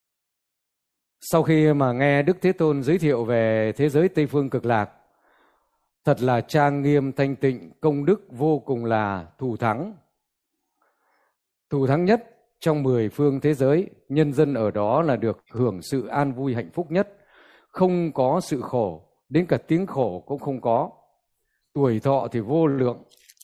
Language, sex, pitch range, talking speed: Vietnamese, male, 120-160 Hz, 170 wpm